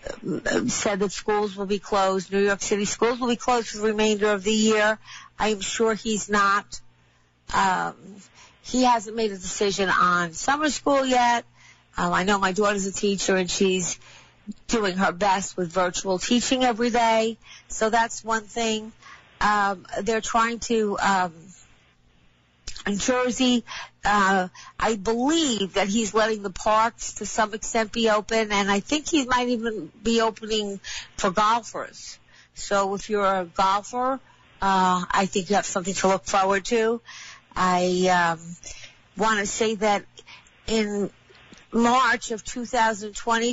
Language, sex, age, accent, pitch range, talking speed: English, female, 50-69, American, 195-230 Hz, 150 wpm